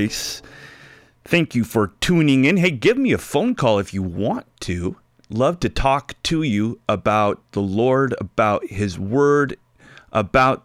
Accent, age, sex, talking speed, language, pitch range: American, 30-49, male, 150 wpm, English, 105-135 Hz